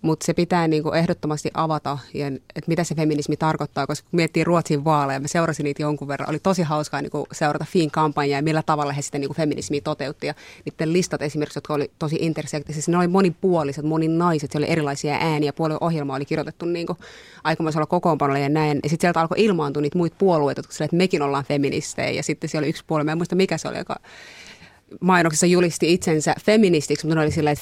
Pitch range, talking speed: 150-170 Hz, 205 wpm